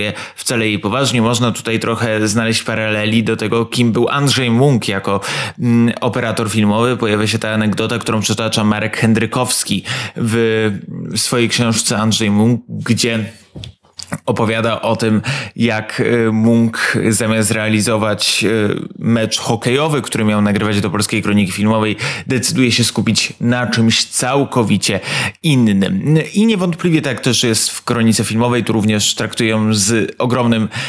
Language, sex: Polish, male